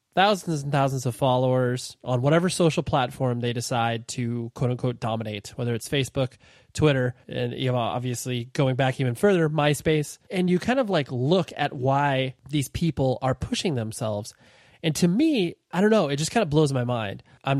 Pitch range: 125-160 Hz